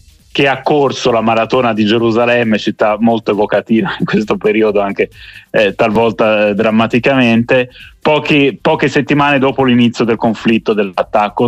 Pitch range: 105-130 Hz